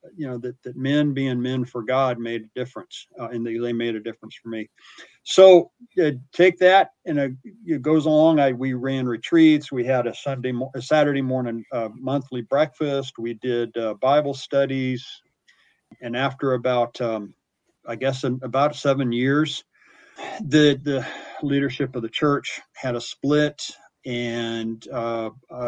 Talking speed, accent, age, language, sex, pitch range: 165 wpm, American, 50-69, English, male, 120-145 Hz